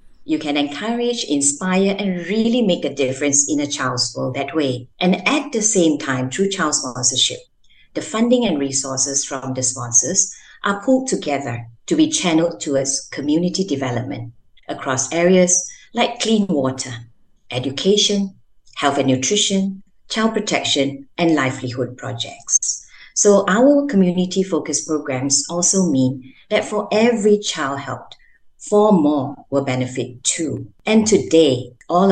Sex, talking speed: female, 135 wpm